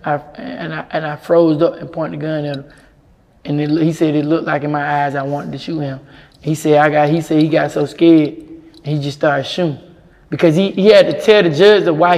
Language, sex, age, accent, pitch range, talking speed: English, male, 20-39, American, 155-200 Hz, 250 wpm